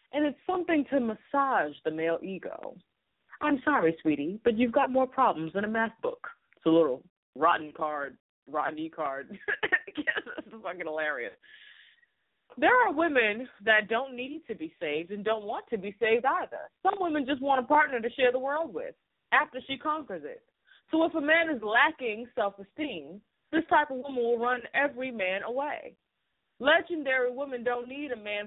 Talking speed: 175 wpm